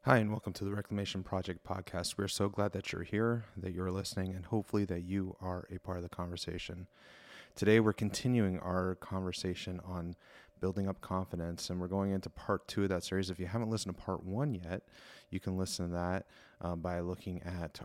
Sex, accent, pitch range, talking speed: male, American, 90-105 Hz, 210 wpm